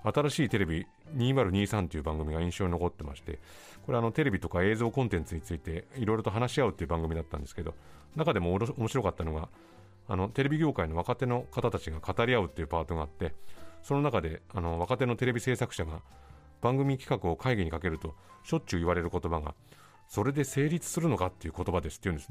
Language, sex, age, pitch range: Japanese, male, 40-59, 85-125 Hz